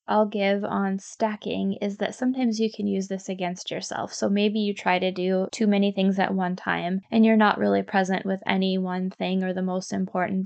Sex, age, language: female, 10-29, English